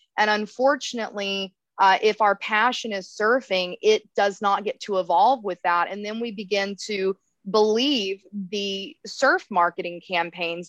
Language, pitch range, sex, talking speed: English, 190-235 Hz, female, 145 wpm